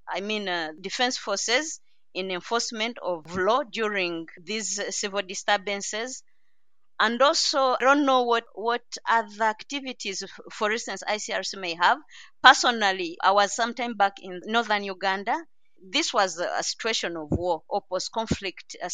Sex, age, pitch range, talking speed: female, 30-49, 195-250 Hz, 140 wpm